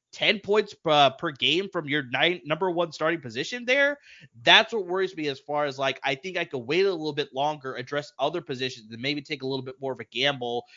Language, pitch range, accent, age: English, 130-205 Hz, American, 20-39